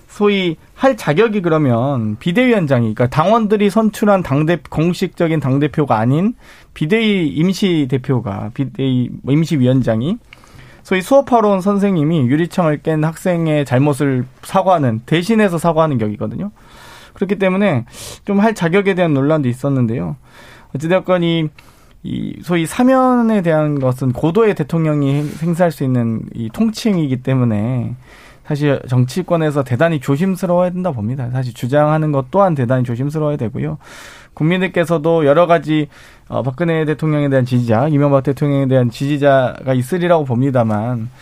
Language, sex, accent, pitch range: Korean, male, native, 130-180 Hz